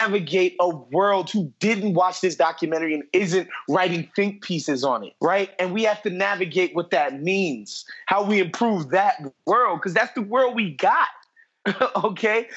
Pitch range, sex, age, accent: 170-220 Hz, male, 30-49, American